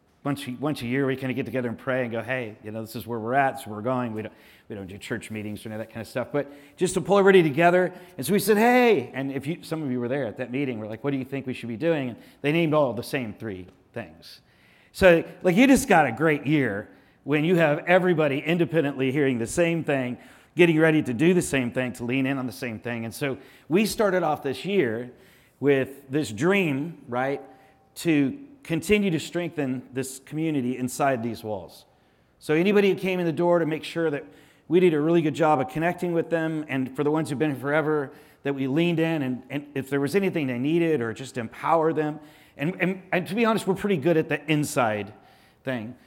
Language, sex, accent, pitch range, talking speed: English, male, American, 130-170 Hz, 245 wpm